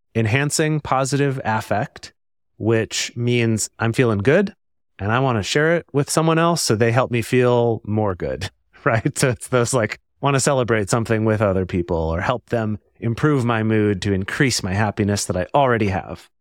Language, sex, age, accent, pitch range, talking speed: English, male, 30-49, American, 100-135 Hz, 185 wpm